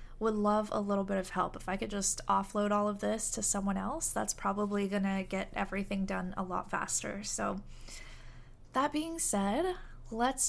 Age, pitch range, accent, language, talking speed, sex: 10-29, 195-225 Hz, American, English, 190 wpm, female